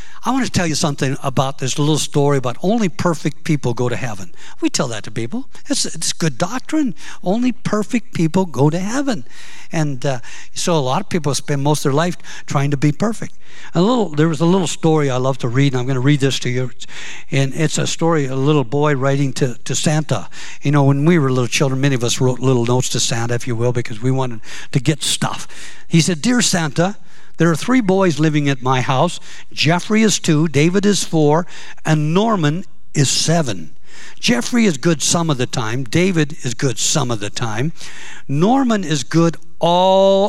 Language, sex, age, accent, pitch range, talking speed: English, male, 60-79, American, 135-175 Hz, 210 wpm